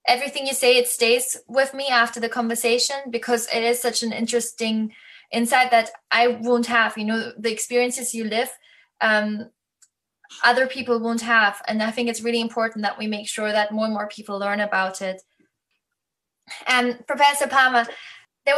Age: 10-29